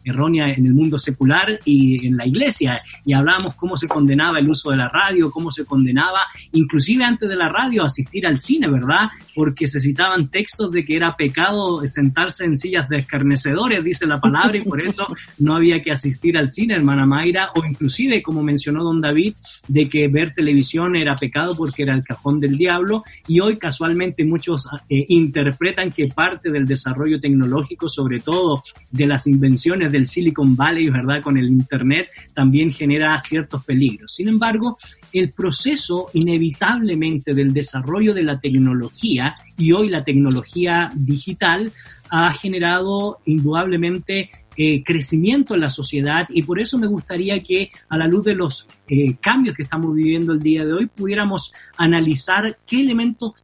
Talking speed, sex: 170 wpm, male